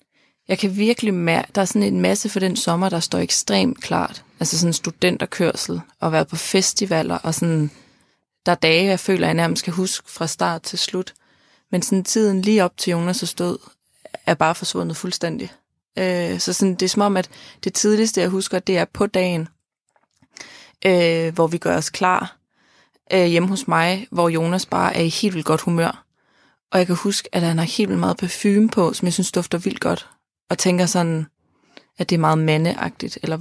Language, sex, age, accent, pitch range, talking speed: Danish, female, 20-39, native, 170-200 Hz, 205 wpm